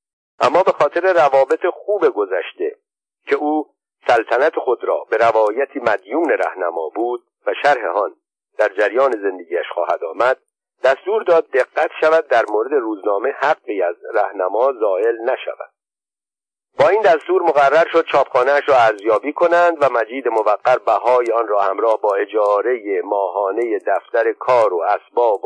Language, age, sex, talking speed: Persian, 50-69, male, 135 wpm